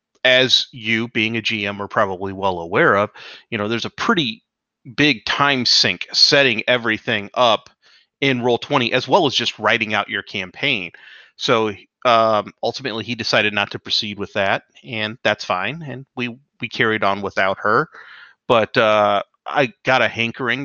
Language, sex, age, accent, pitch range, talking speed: English, male, 30-49, American, 110-135 Hz, 165 wpm